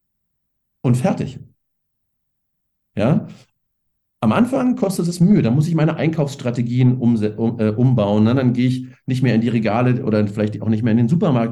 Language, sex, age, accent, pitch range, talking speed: German, male, 40-59, German, 115-150 Hz, 155 wpm